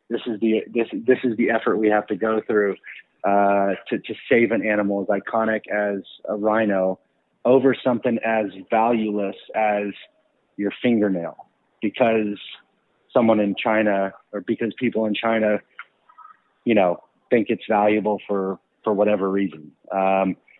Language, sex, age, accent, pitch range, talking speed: English, male, 30-49, American, 100-120 Hz, 145 wpm